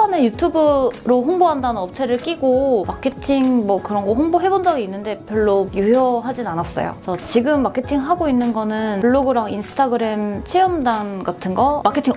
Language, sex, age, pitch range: Korean, female, 20-39, 205-265 Hz